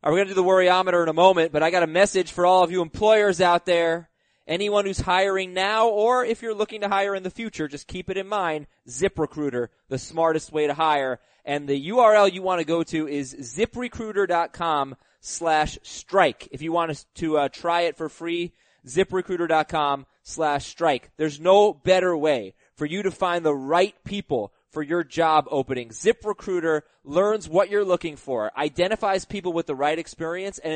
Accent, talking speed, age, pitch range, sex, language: American, 190 wpm, 20-39, 155-205 Hz, male, English